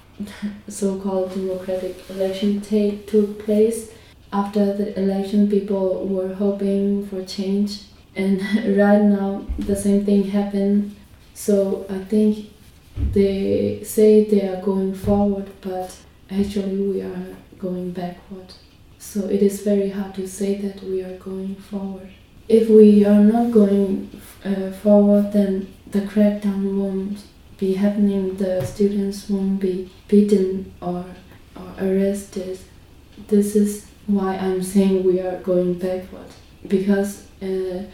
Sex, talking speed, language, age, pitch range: female, 125 wpm, English, 20-39, 190-205 Hz